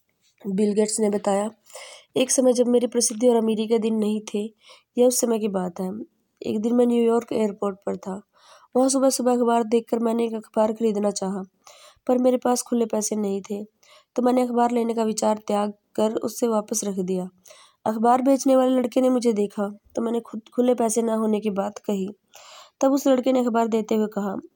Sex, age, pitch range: female, 20-39, 205-250 Hz